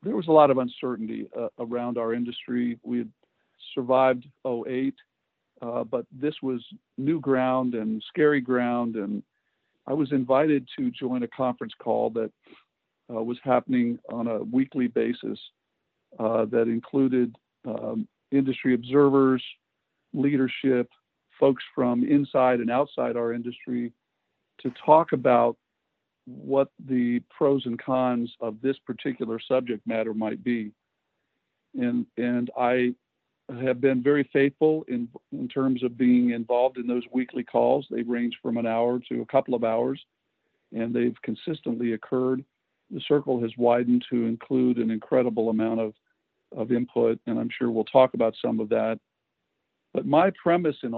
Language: English